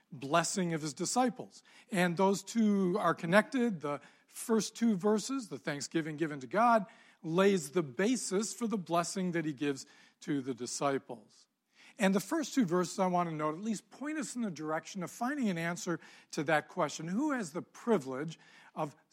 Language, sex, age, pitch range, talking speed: English, male, 40-59, 155-210 Hz, 180 wpm